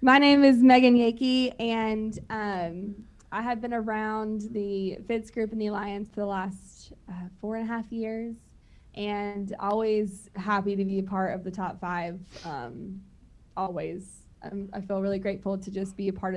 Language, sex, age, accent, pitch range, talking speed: English, female, 20-39, American, 195-235 Hz, 180 wpm